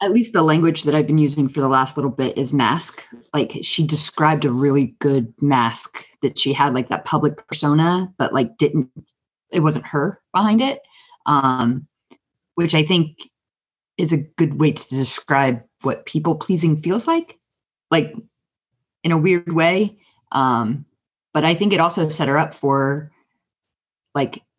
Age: 20-39